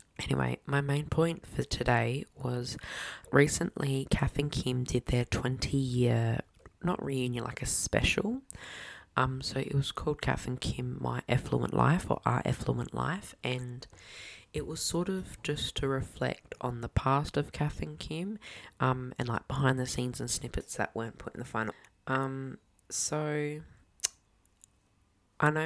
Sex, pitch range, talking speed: female, 120-145 Hz, 155 wpm